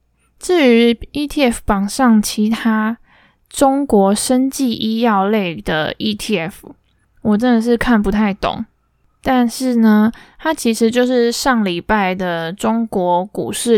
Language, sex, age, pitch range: Chinese, female, 20-39, 195-235 Hz